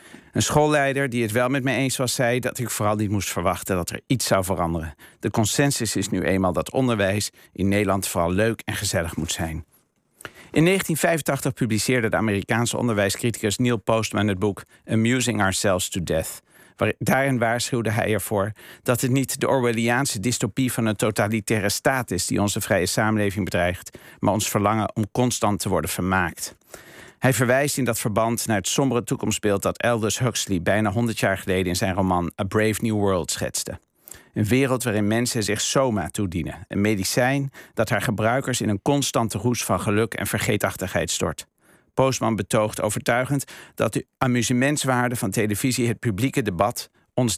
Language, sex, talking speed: Dutch, male, 170 wpm